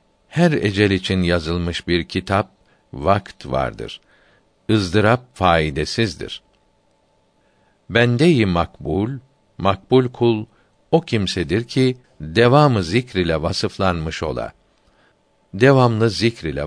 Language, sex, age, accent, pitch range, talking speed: Turkish, male, 60-79, native, 90-115 Hz, 85 wpm